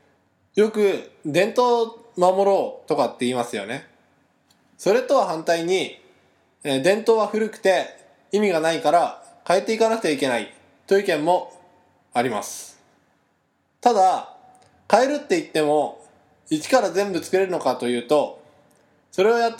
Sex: male